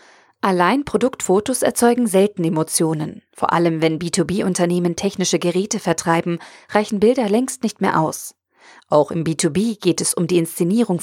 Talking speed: 140 wpm